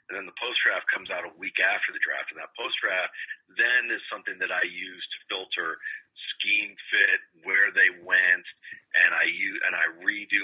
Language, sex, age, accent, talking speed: English, male, 40-59, American, 200 wpm